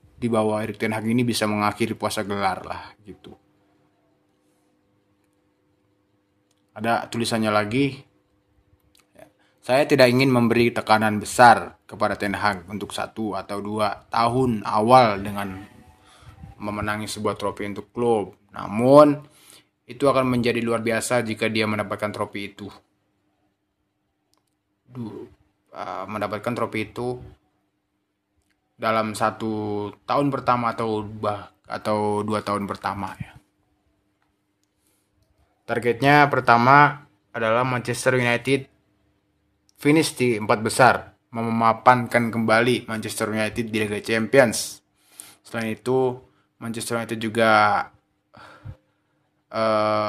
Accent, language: native, Indonesian